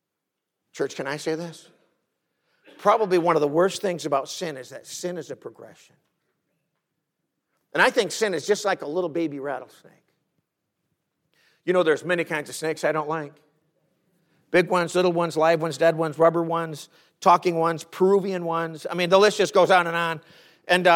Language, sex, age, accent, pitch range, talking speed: English, male, 50-69, American, 165-215 Hz, 185 wpm